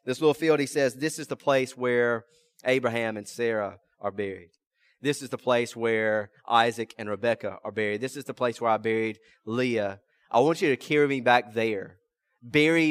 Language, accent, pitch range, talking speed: English, American, 135-190 Hz, 195 wpm